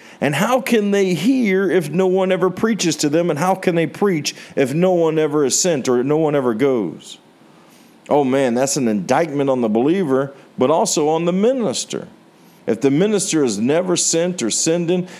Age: 50-69